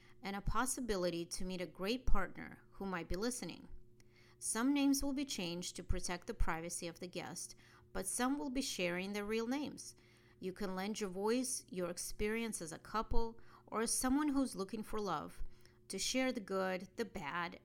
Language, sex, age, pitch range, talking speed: English, female, 40-59, 175-225 Hz, 185 wpm